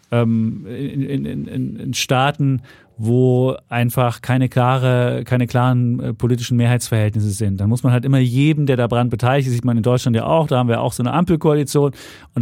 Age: 40-59